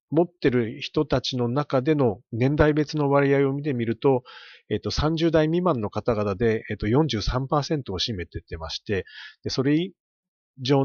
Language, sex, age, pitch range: Japanese, male, 40-59, 105-145 Hz